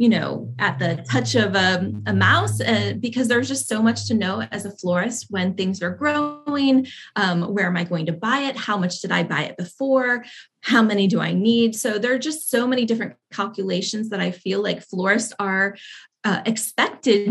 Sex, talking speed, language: female, 210 wpm, English